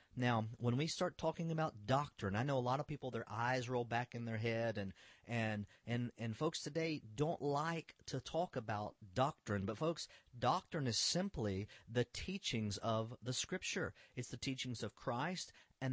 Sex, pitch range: male, 110-150 Hz